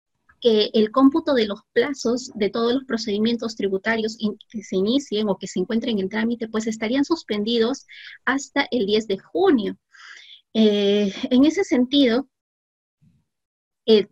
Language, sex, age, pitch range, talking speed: Spanish, female, 30-49, 195-240 Hz, 140 wpm